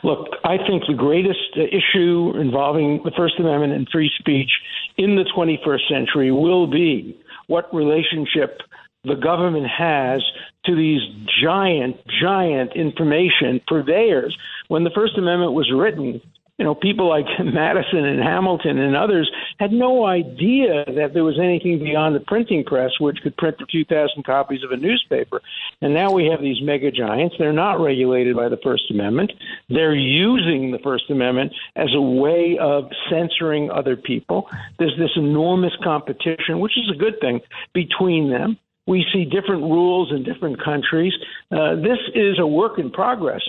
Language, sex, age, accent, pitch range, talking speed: English, male, 60-79, American, 145-190 Hz, 160 wpm